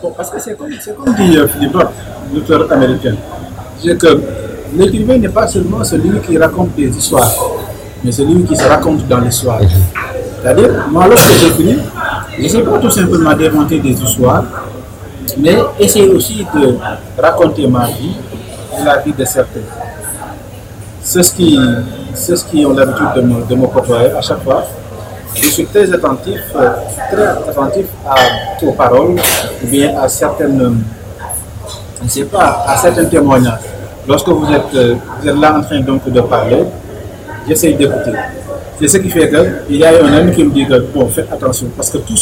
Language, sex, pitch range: French, male, 110-150 Hz